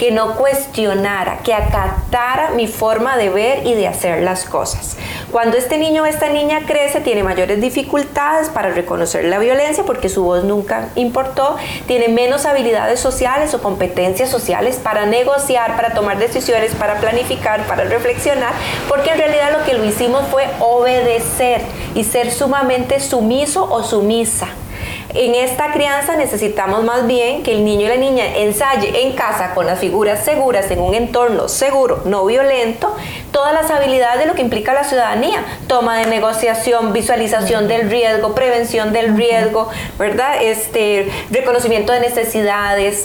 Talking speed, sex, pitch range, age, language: 155 wpm, female, 220-270 Hz, 30-49, Spanish